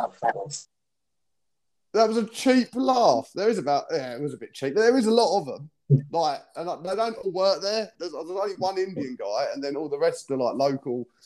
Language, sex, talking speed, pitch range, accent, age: English, male, 225 wpm, 135-195 Hz, British, 20-39